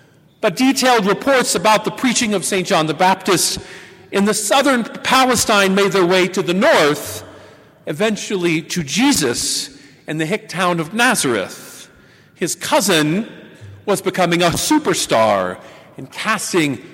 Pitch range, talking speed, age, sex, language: 170-235 Hz, 135 wpm, 50-69, male, English